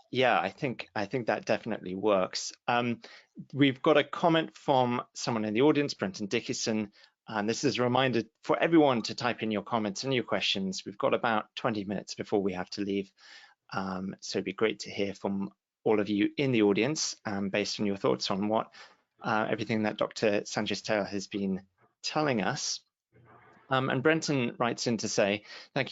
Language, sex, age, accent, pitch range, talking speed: English, male, 30-49, British, 105-130 Hz, 190 wpm